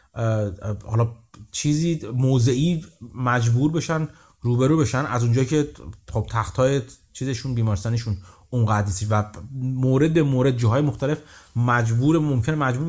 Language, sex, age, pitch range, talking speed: Persian, male, 30-49, 115-145 Hz, 105 wpm